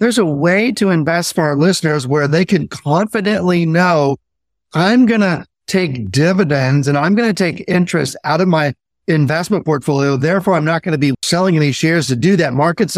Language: English